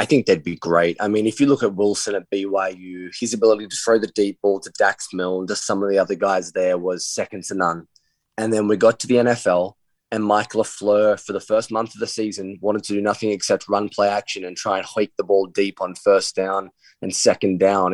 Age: 20-39